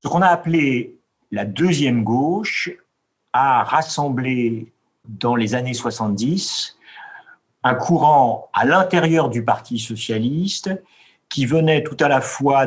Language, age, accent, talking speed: French, 50-69, French, 125 wpm